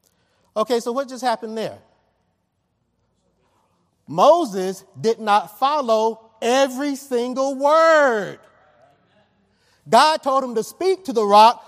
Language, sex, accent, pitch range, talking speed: English, male, American, 230-295 Hz, 110 wpm